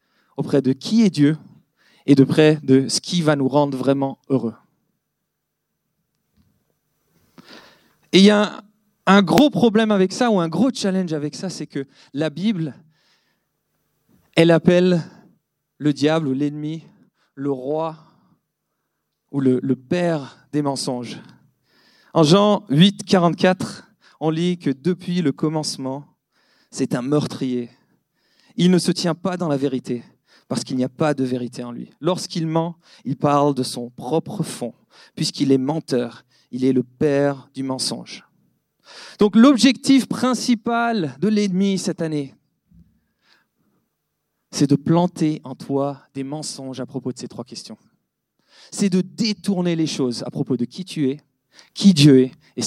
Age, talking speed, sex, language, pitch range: 40-59, 150 wpm, male, French, 135-185 Hz